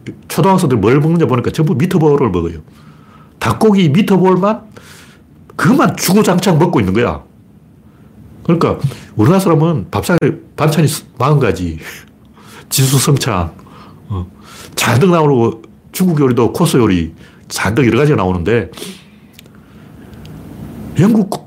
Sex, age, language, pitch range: male, 60-79, Korean, 105-160 Hz